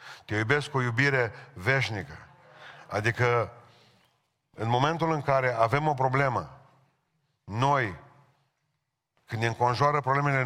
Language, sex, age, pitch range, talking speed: Romanian, male, 40-59, 120-145 Hz, 110 wpm